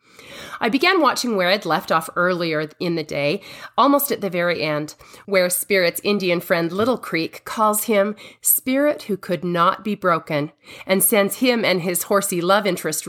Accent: American